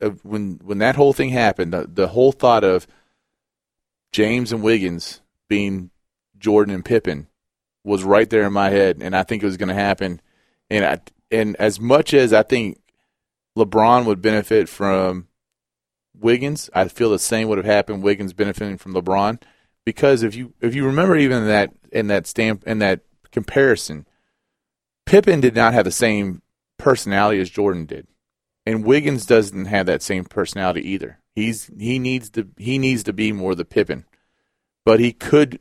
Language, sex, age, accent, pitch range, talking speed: English, male, 30-49, American, 95-115 Hz, 170 wpm